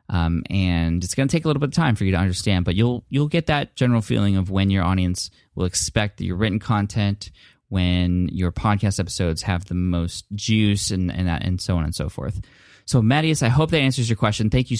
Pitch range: 95-120 Hz